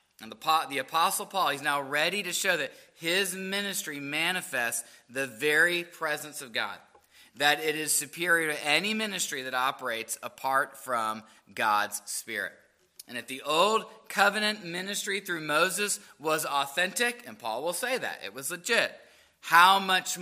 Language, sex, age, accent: English, male, 30-49, American